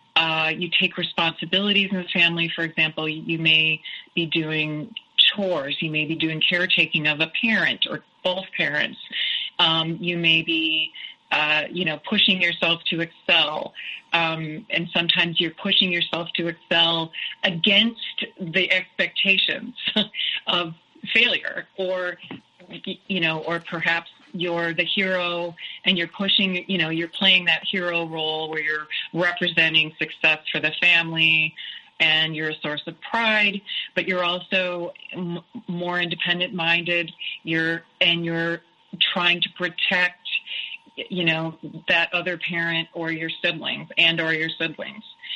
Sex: female